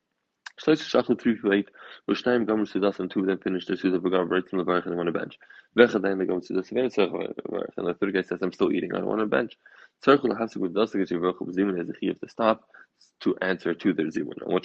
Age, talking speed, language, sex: 20-39, 130 wpm, English, male